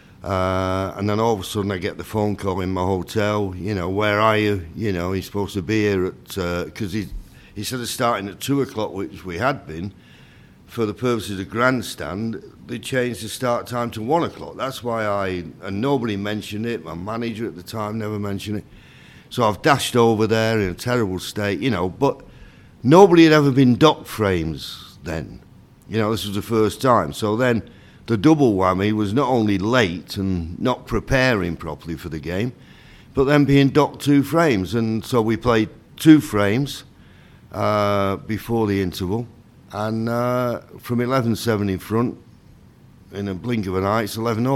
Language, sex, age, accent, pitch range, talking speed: English, male, 60-79, British, 95-120 Hz, 190 wpm